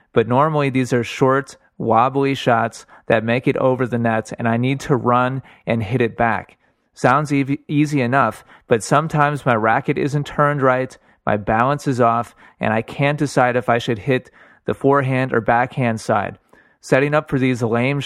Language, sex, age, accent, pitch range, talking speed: English, male, 30-49, American, 115-140 Hz, 180 wpm